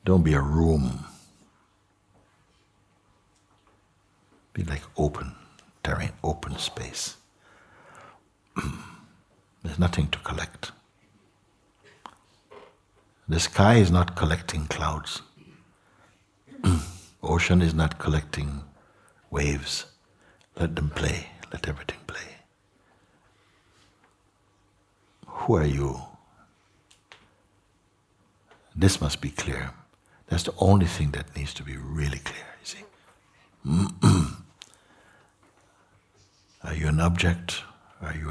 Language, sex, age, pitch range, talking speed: English, male, 60-79, 80-100 Hz, 90 wpm